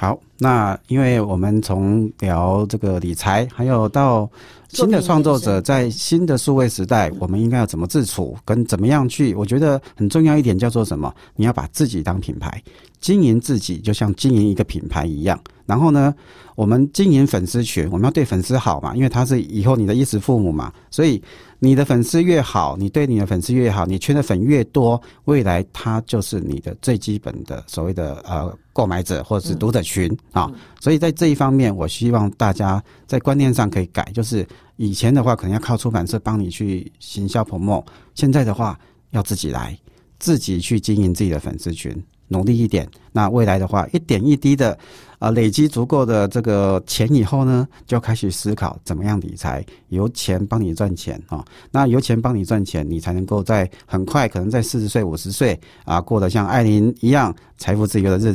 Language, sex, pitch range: Chinese, male, 95-130 Hz